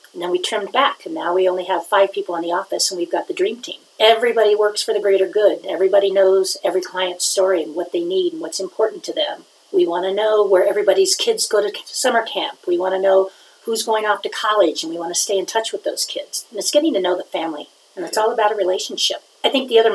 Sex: female